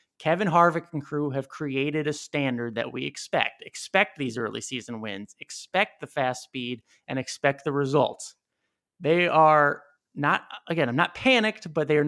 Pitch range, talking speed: 145-185 Hz, 170 wpm